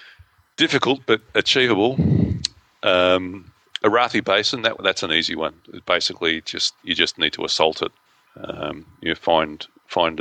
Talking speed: 135 wpm